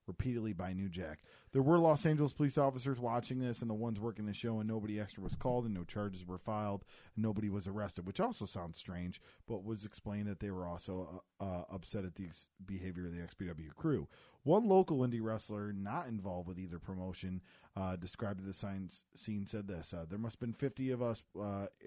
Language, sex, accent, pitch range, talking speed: English, male, American, 95-115 Hz, 215 wpm